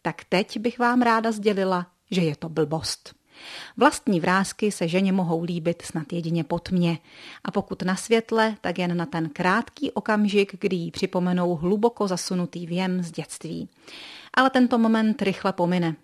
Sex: female